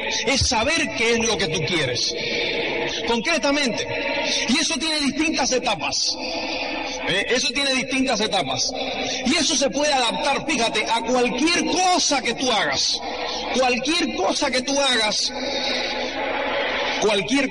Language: Spanish